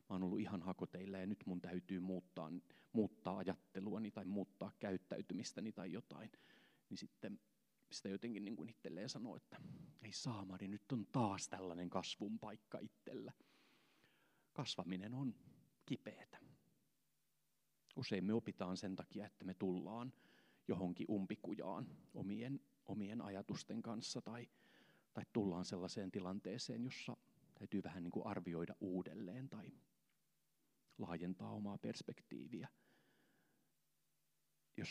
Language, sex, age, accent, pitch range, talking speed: Finnish, male, 30-49, native, 90-110 Hz, 115 wpm